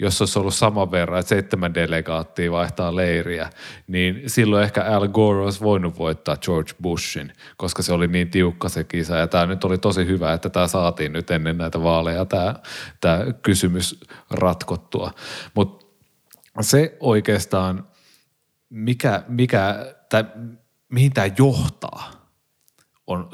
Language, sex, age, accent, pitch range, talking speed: Finnish, male, 30-49, native, 85-105 Hz, 130 wpm